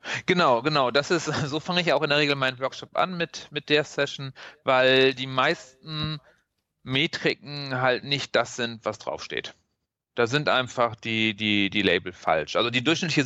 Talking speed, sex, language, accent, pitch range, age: 175 wpm, male, German, German, 115-145 Hz, 40-59